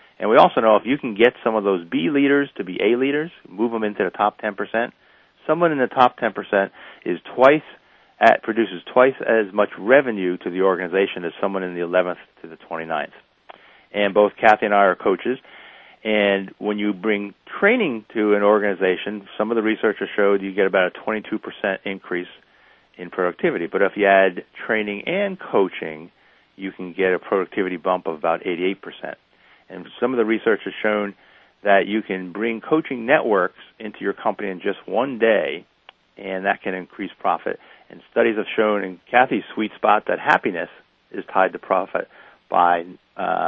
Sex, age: male, 40-59